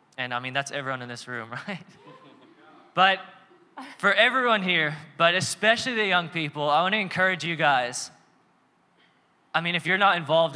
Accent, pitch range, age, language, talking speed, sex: American, 140-175 Hz, 10-29, English, 170 wpm, male